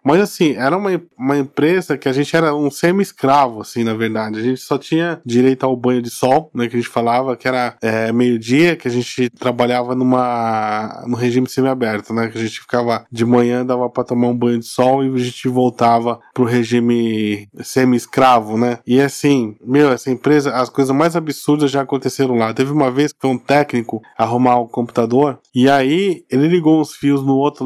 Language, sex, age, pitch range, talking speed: Portuguese, male, 20-39, 125-160 Hz, 210 wpm